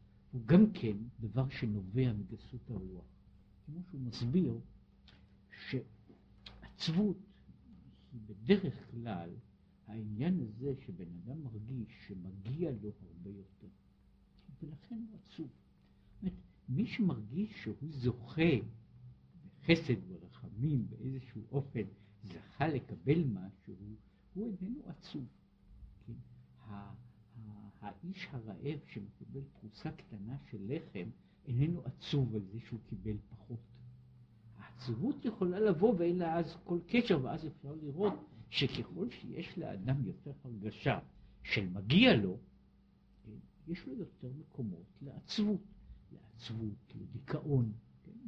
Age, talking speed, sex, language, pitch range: 60-79, 105 wpm, male, Hebrew, 105-170 Hz